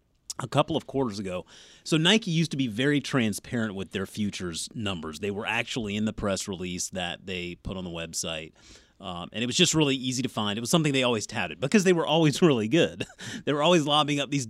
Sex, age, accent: male, 30-49, American